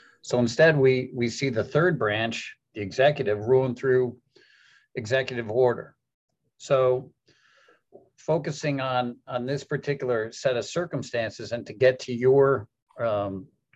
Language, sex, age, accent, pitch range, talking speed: English, male, 50-69, American, 120-140 Hz, 125 wpm